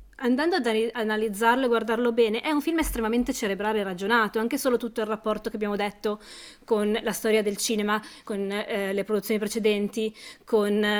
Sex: female